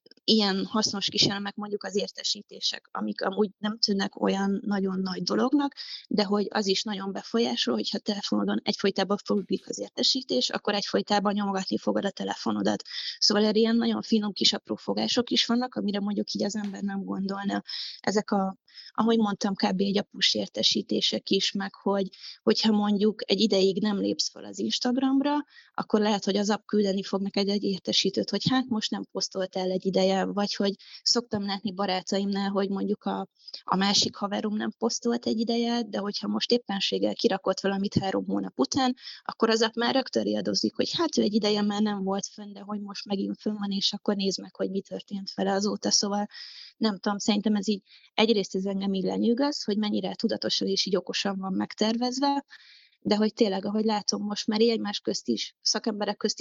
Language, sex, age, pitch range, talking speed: Hungarian, female, 20-39, 195-220 Hz, 180 wpm